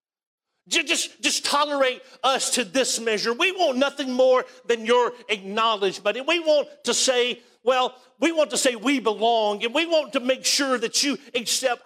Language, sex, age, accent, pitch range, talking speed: English, male, 50-69, American, 220-270 Hz, 175 wpm